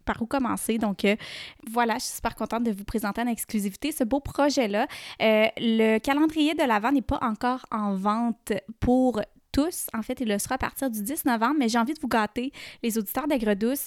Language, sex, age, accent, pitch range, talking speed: French, female, 20-39, Canadian, 215-250 Hz, 210 wpm